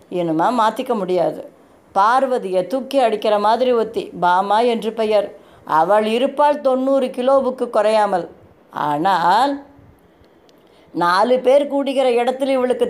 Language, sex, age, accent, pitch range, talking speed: Tamil, female, 20-39, native, 210-275 Hz, 100 wpm